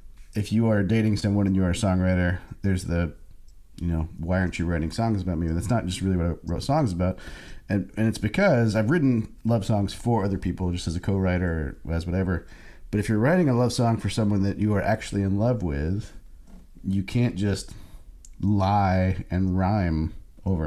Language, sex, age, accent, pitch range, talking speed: English, male, 30-49, American, 85-105 Hz, 210 wpm